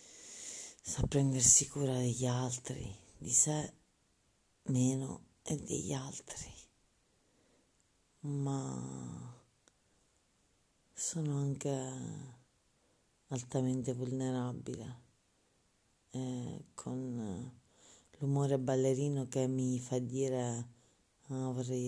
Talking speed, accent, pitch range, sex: 70 wpm, native, 120-130 Hz, female